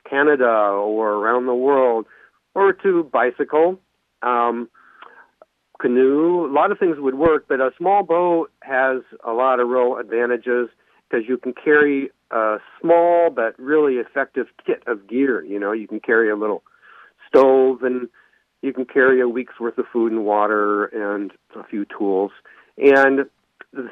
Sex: male